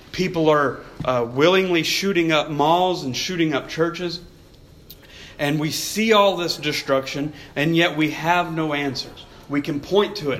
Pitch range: 140-175 Hz